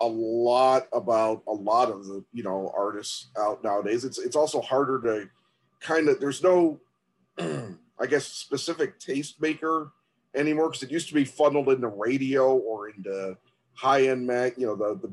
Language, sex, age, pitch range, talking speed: English, male, 40-59, 105-140 Hz, 165 wpm